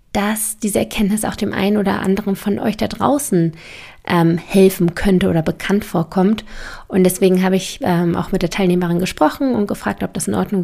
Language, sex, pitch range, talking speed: German, female, 175-220 Hz, 190 wpm